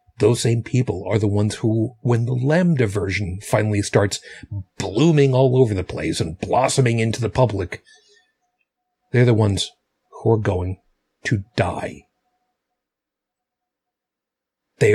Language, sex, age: English, male, 40-59